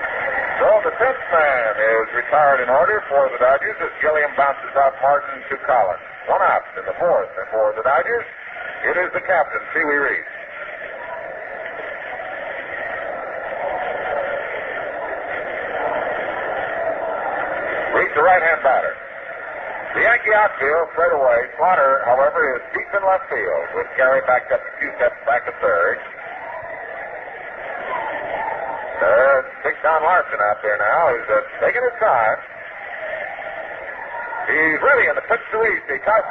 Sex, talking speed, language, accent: male, 135 wpm, English, American